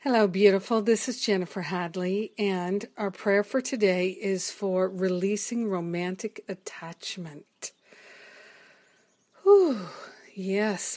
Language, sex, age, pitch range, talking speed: English, female, 50-69, 185-210 Hz, 100 wpm